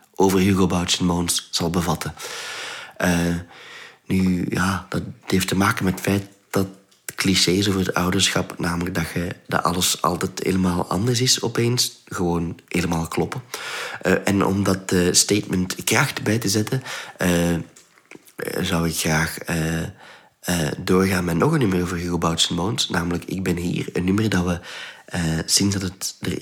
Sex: male